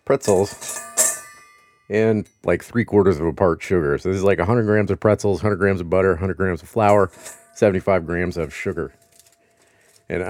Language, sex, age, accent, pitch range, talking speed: English, male, 40-59, American, 90-115 Hz, 175 wpm